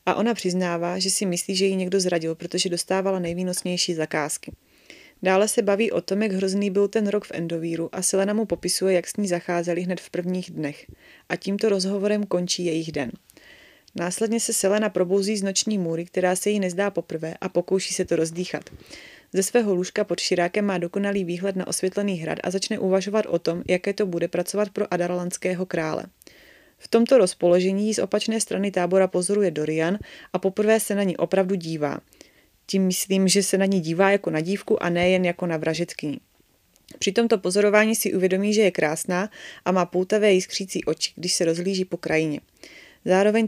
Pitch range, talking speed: 175-200 Hz, 185 wpm